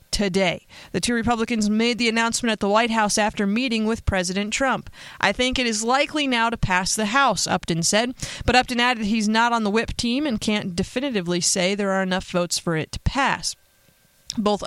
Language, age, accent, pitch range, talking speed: English, 30-49, American, 185-230 Hz, 205 wpm